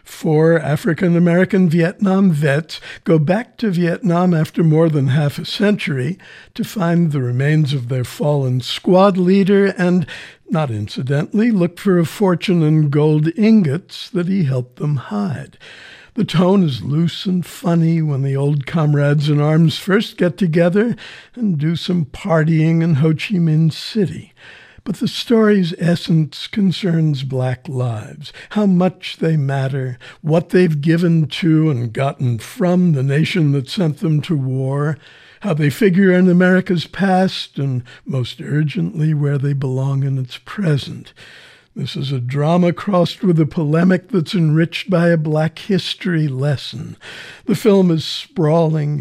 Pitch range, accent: 145-180 Hz, American